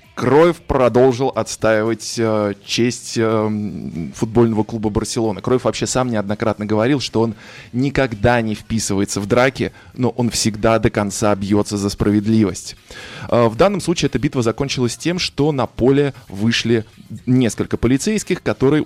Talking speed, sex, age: 135 wpm, male, 20-39